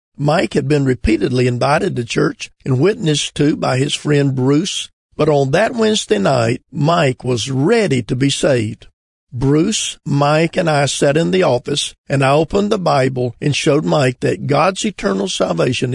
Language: English